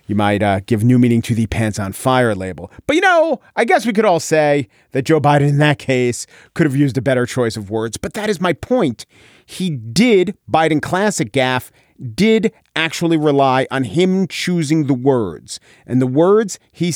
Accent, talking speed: American, 200 wpm